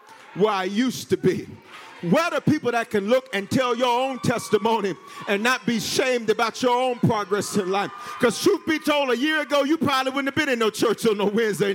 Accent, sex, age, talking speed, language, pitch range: American, male, 50-69, 225 wpm, English, 220-295 Hz